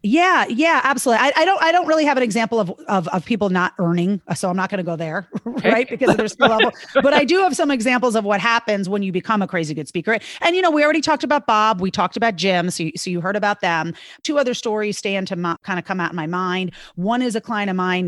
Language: English